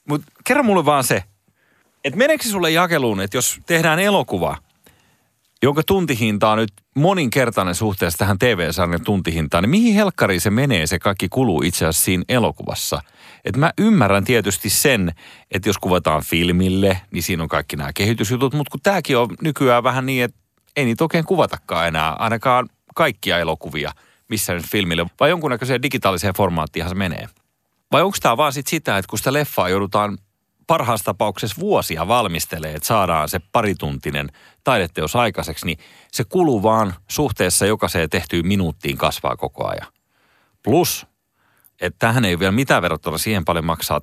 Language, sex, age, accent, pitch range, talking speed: Finnish, male, 30-49, native, 85-130 Hz, 160 wpm